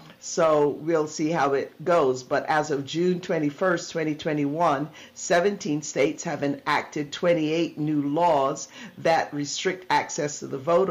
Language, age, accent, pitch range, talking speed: English, 50-69, American, 145-175 Hz, 140 wpm